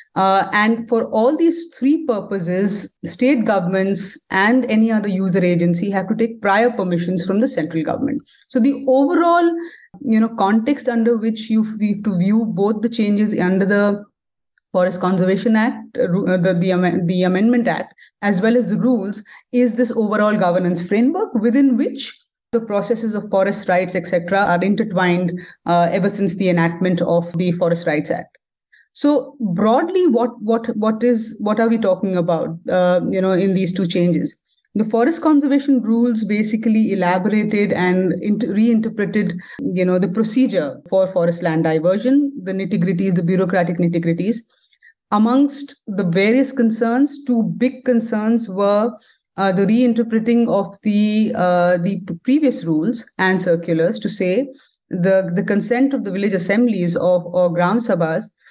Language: English